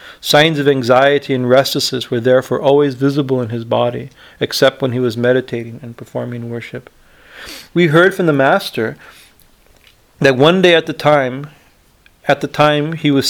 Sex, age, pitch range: male, 40-59, 130-155 Hz